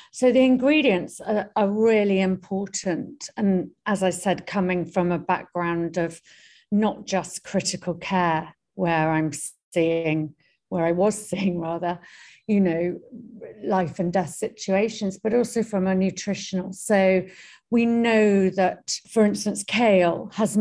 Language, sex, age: English, female, 50-69